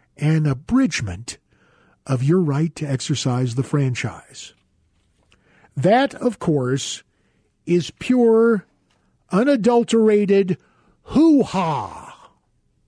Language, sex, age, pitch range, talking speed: English, male, 50-69, 160-260 Hz, 80 wpm